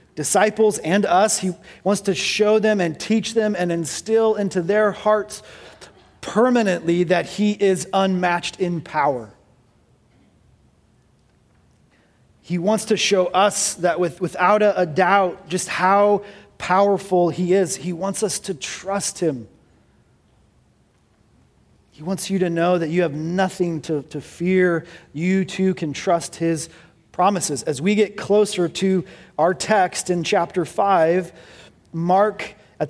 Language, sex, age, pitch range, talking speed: English, male, 30-49, 170-205 Hz, 135 wpm